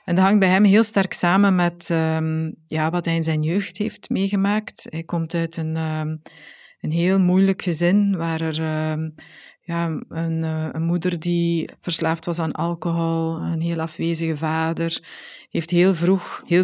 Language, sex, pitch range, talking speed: Dutch, female, 165-190 Hz, 165 wpm